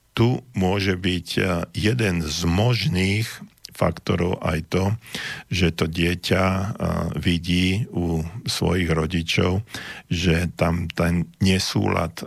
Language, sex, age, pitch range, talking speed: Slovak, male, 50-69, 80-100 Hz, 100 wpm